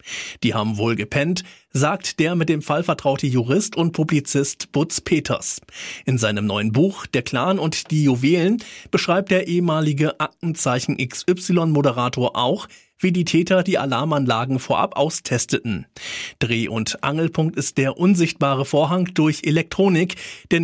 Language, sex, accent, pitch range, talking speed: German, male, German, 130-170 Hz, 135 wpm